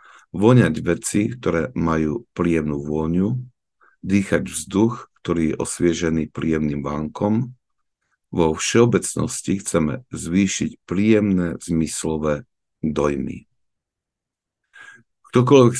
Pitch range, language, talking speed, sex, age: 80-105 Hz, Slovak, 80 wpm, male, 50-69